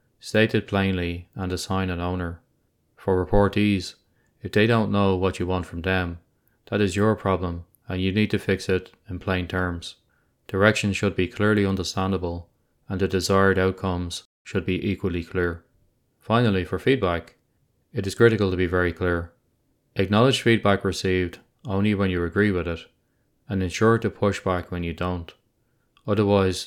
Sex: male